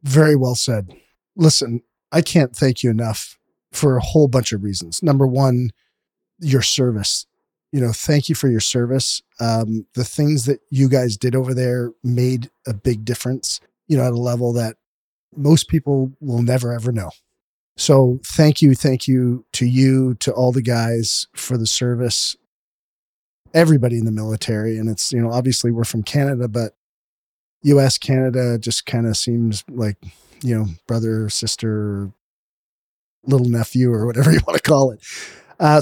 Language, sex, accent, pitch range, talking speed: English, male, American, 115-150 Hz, 165 wpm